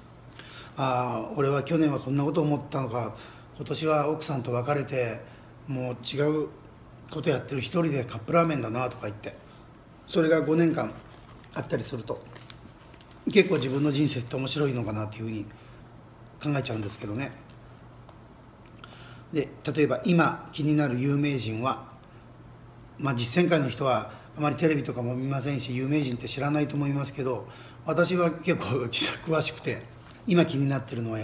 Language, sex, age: Japanese, male, 40-59